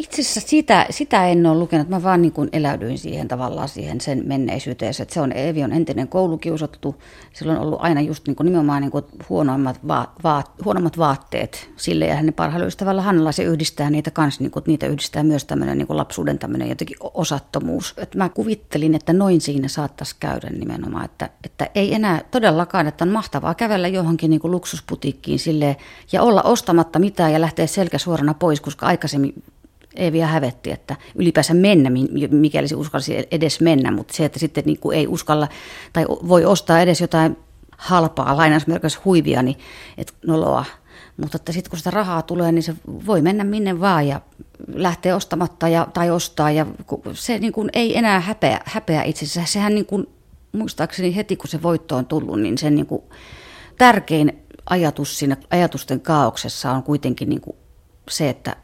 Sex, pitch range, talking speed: female, 150-180 Hz, 175 wpm